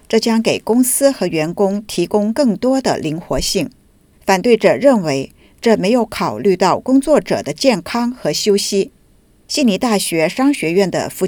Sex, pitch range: female, 180-230 Hz